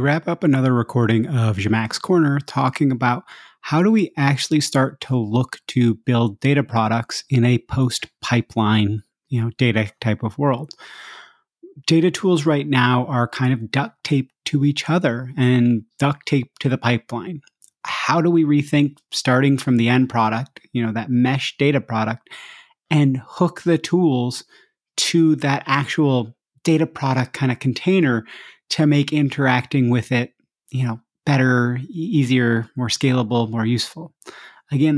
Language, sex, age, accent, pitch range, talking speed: English, male, 30-49, American, 120-150 Hz, 155 wpm